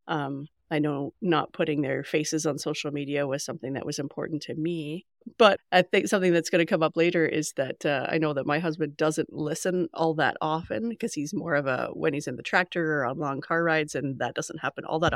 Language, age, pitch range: English, 30-49, 150-195 Hz